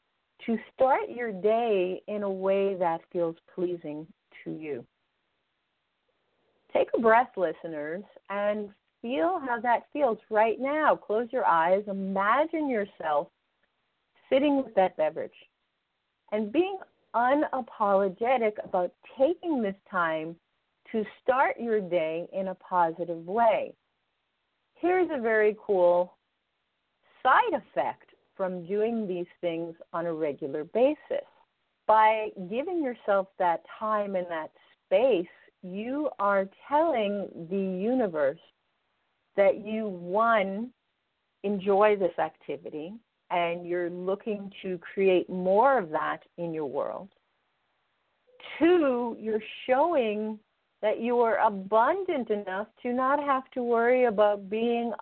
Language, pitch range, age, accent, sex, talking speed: English, 185-245 Hz, 40-59, American, female, 115 wpm